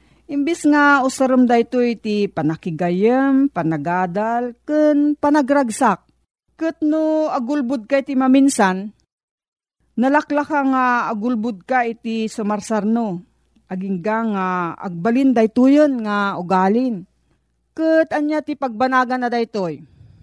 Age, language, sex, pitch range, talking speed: 40-59, Filipino, female, 190-255 Hz, 90 wpm